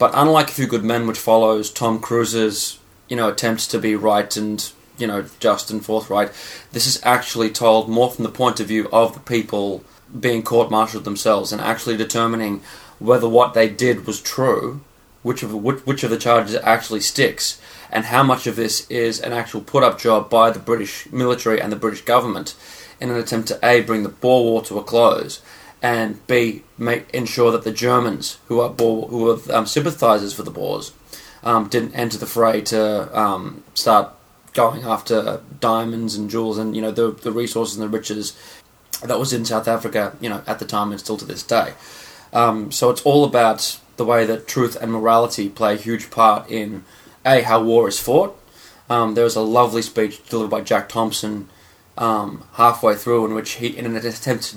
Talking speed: 200 wpm